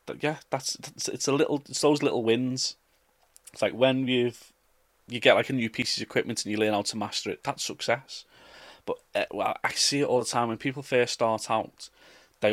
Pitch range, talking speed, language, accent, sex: 100-130 Hz, 205 wpm, English, British, male